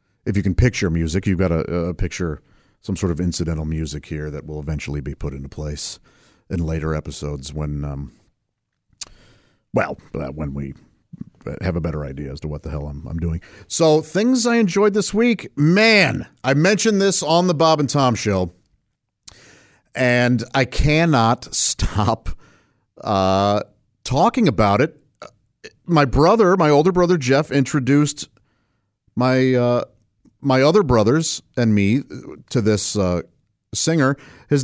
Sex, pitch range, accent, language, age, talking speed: male, 95-145 Hz, American, English, 50-69, 145 wpm